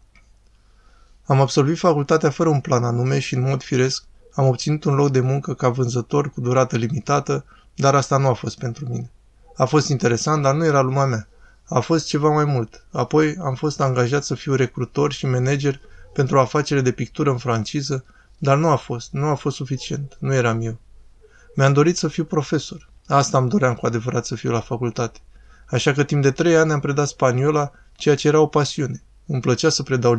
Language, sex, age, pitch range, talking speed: Romanian, male, 20-39, 120-145 Hz, 200 wpm